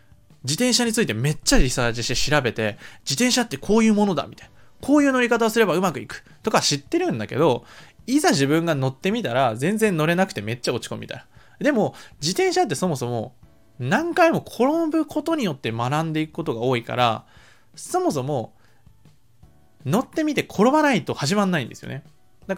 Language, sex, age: Japanese, male, 20-39